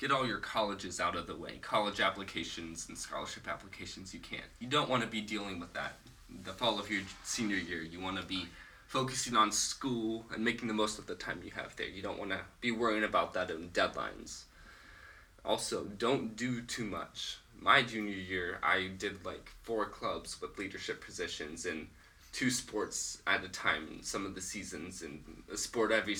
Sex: male